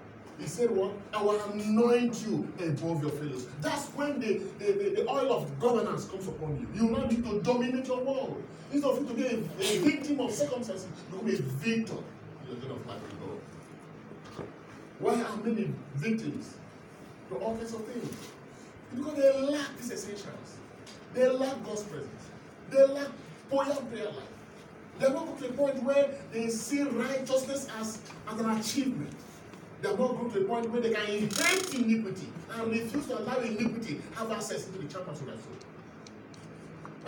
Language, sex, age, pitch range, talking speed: English, male, 40-59, 205-265 Hz, 180 wpm